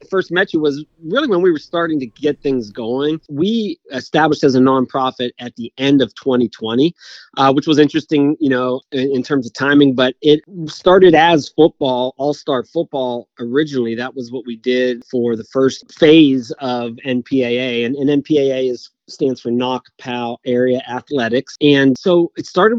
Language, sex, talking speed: English, male, 180 wpm